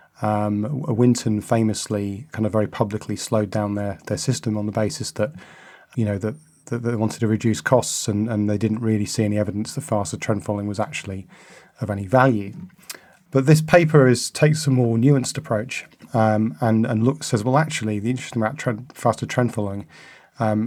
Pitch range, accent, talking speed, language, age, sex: 110-130 Hz, British, 190 wpm, English, 30-49, male